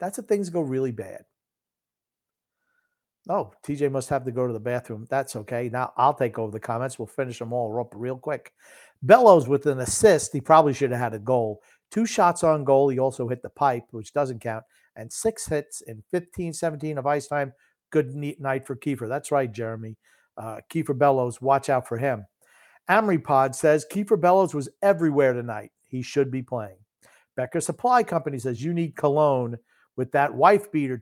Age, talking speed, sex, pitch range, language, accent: 50-69, 190 wpm, male, 120-150 Hz, English, American